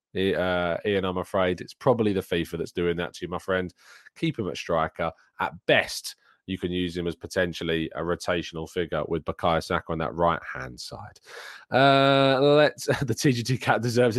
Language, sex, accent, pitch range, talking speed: English, male, British, 95-140 Hz, 180 wpm